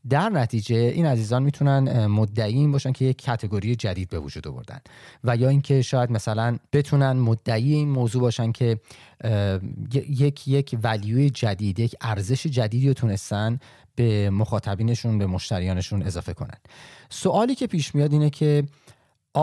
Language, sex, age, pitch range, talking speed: Persian, male, 30-49, 105-135 Hz, 140 wpm